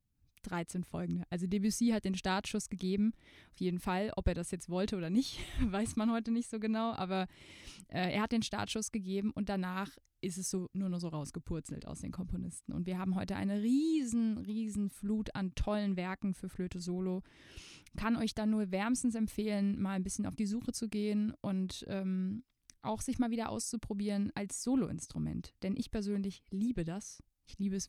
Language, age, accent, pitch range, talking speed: German, 20-39, German, 190-220 Hz, 190 wpm